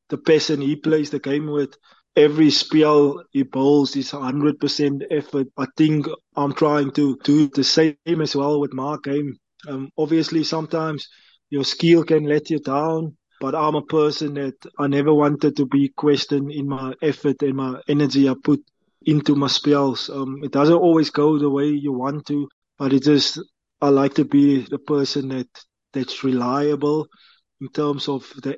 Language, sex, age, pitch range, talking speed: English, male, 20-39, 140-155 Hz, 180 wpm